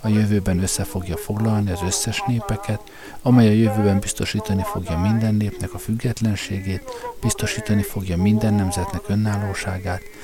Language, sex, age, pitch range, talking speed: Hungarian, male, 50-69, 95-115 Hz, 130 wpm